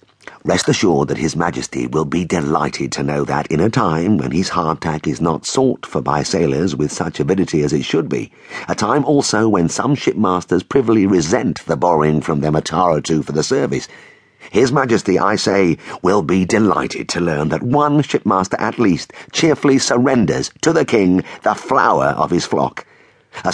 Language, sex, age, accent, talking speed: English, male, 50-69, British, 185 wpm